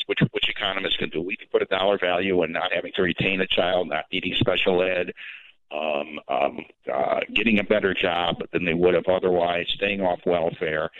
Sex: male